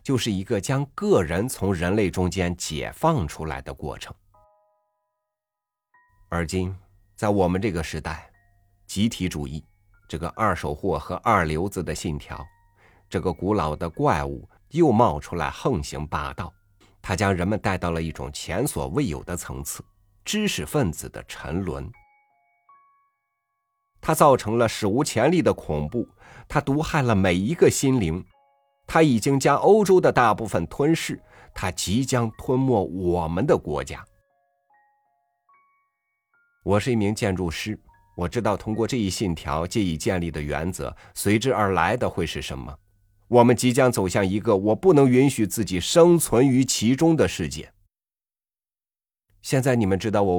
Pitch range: 85-125 Hz